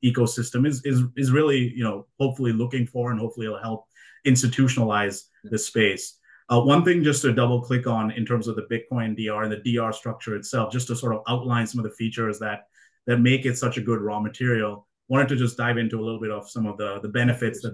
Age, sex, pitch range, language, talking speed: 30-49, male, 110-125 Hz, English, 235 wpm